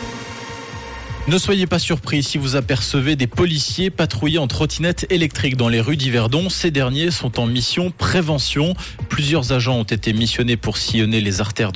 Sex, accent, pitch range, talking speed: male, French, 110-145 Hz, 165 wpm